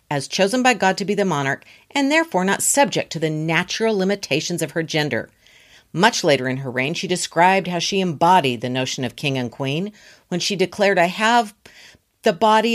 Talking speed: 200 wpm